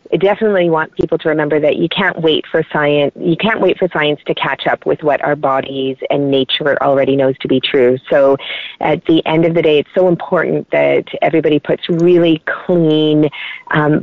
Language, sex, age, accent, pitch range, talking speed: English, female, 30-49, American, 145-165 Hz, 200 wpm